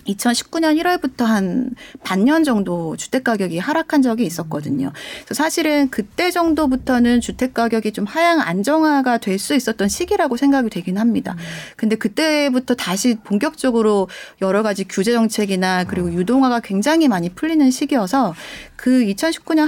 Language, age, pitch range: Korean, 30-49, 200-290 Hz